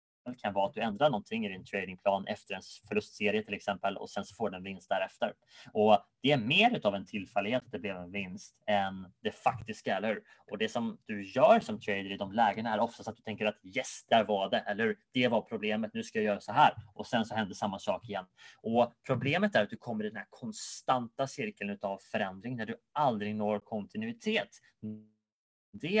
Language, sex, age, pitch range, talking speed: Swedish, male, 20-39, 105-135 Hz, 215 wpm